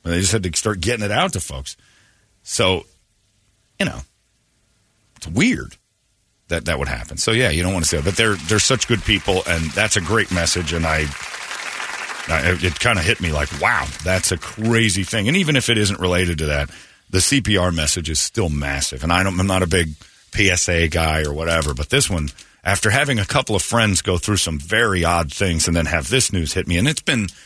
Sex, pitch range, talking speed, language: male, 80-110 Hz, 225 wpm, English